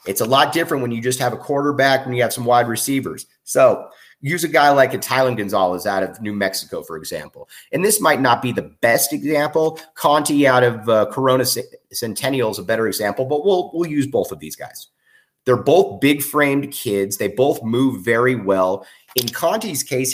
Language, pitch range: English, 105-145 Hz